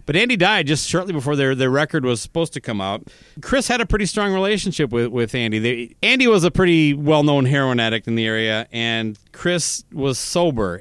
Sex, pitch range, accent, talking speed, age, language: male, 125-160 Hz, American, 210 wpm, 30-49, English